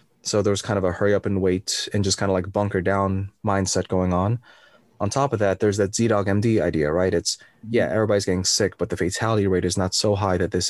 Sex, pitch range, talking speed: male, 90-105 Hz, 250 wpm